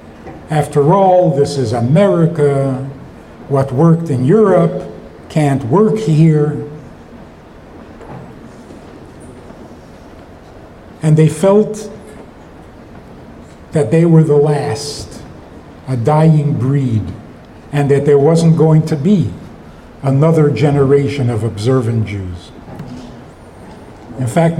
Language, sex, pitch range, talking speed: English, male, 125-175 Hz, 90 wpm